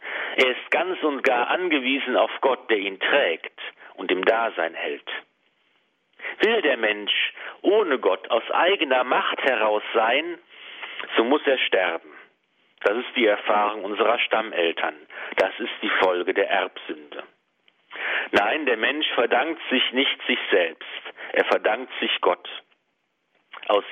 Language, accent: German, German